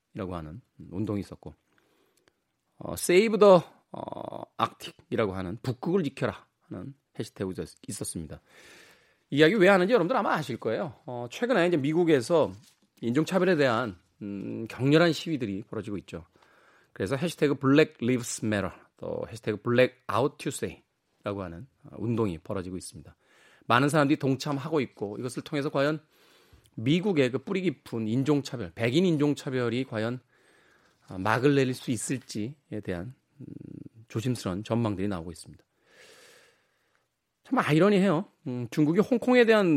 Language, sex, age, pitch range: Korean, male, 30-49, 110-155 Hz